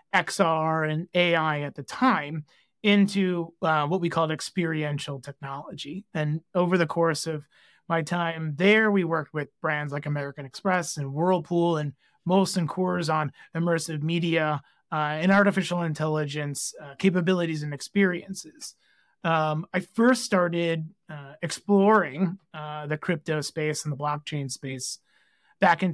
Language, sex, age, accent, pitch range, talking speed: English, male, 30-49, American, 150-185 Hz, 140 wpm